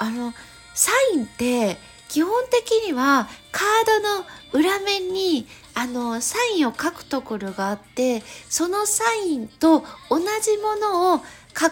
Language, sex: Japanese, female